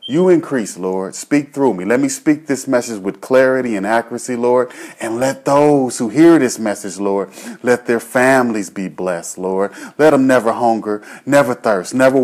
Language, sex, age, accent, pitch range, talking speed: English, male, 30-49, American, 100-130 Hz, 180 wpm